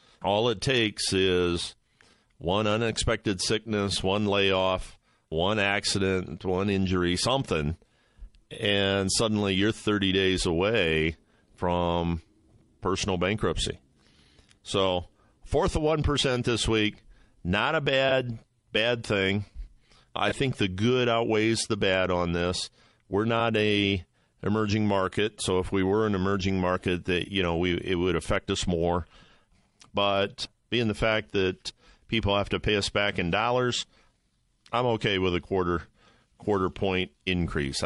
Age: 50-69